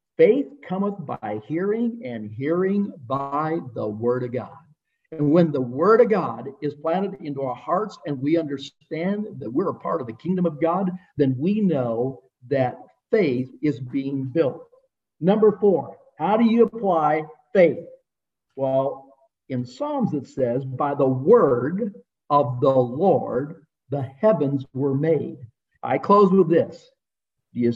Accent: American